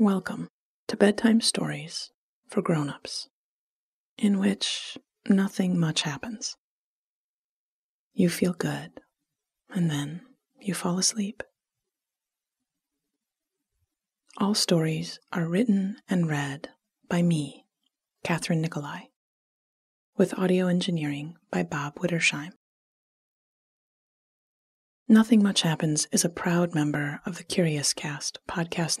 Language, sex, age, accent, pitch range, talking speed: English, female, 30-49, American, 165-210 Hz, 100 wpm